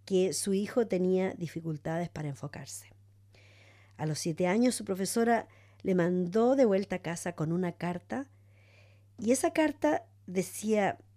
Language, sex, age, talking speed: English, female, 40-59, 140 wpm